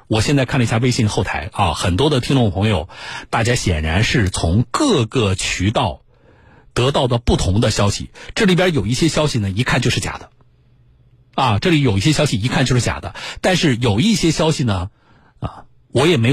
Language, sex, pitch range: Chinese, male, 105-140 Hz